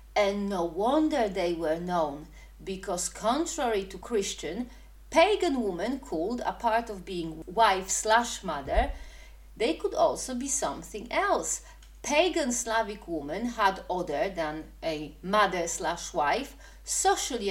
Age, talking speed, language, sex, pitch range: 40-59, 125 wpm, English, female, 190-295 Hz